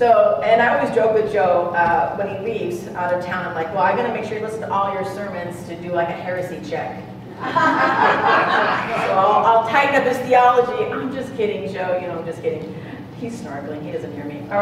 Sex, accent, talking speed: female, American, 235 wpm